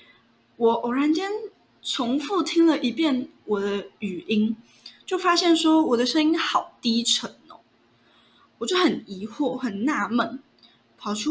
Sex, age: female, 10-29